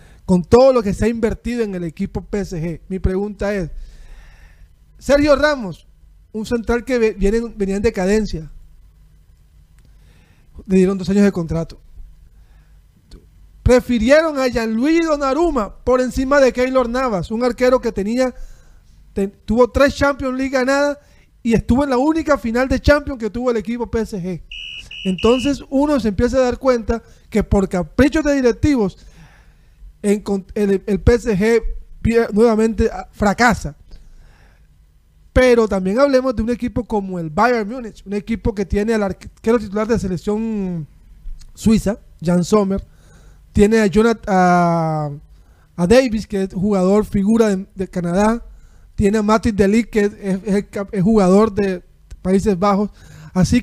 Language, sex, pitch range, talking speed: Spanish, male, 185-240 Hz, 145 wpm